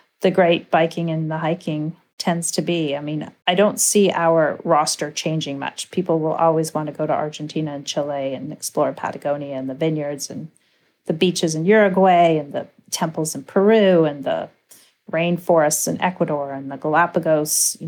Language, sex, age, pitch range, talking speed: English, female, 40-59, 150-180 Hz, 175 wpm